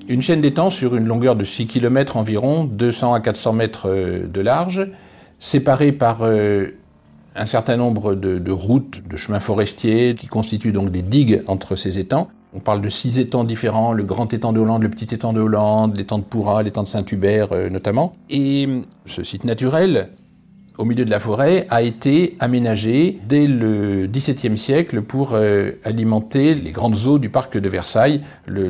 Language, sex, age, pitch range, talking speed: French, male, 60-79, 100-120 Hz, 175 wpm